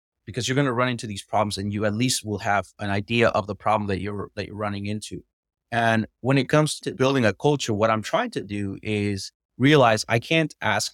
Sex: male